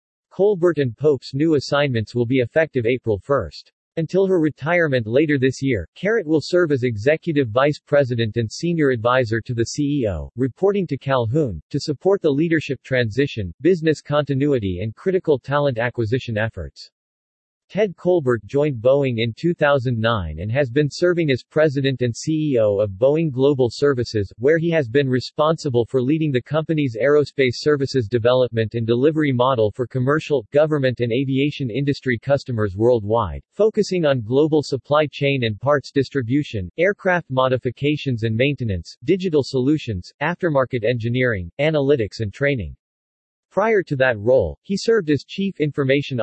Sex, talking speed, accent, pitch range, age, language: male, 145 wpm, American, 120-150 Hz, 40-59, English